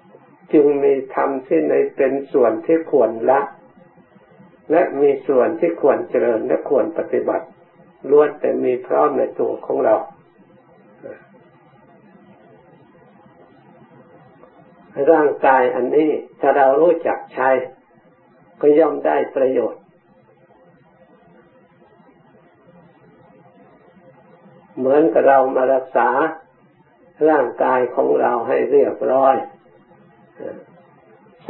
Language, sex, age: Thai, male, 60-79